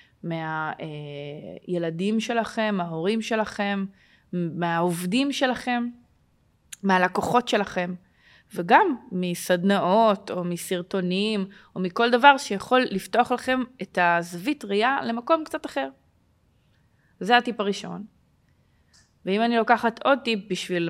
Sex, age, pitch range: female, 20-39, 180-225 Hz